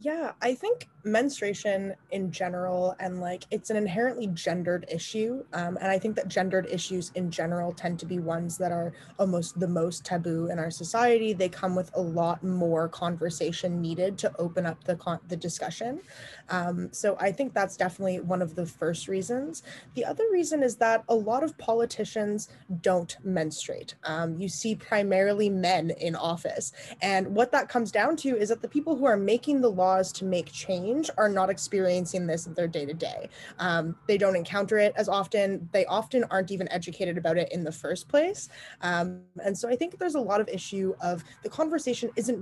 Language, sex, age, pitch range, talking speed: English, female, 20-39, 175-220 Hz, 195 wpm